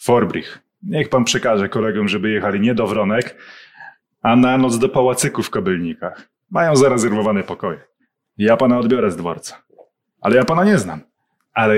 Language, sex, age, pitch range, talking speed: Polish, male, 20-39, 115-185 Hz, 160 wpm